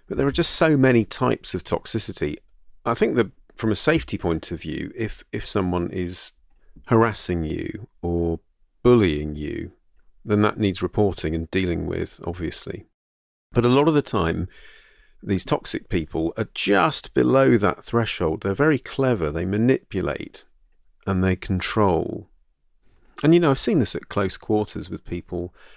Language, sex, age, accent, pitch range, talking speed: English, male, 40-59, British, 85-110 Hz, 160 wpm